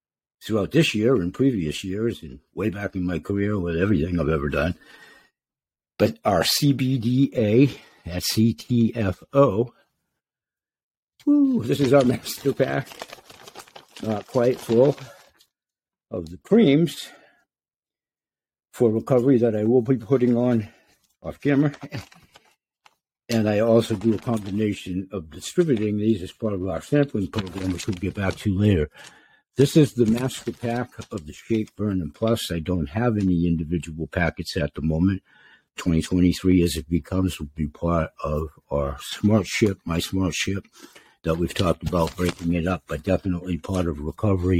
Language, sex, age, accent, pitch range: Chinese, male, 60-79, American, 85-115 Hz